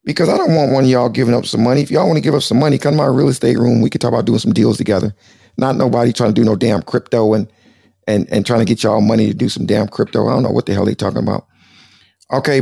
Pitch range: 115-155 Hz